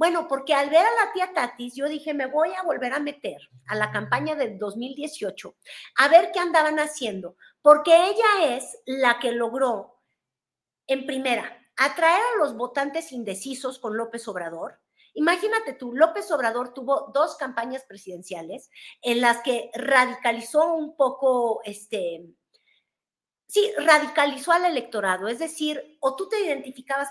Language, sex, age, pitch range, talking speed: Spanish, female, 40-59, 235-300 Hz, 150 wpm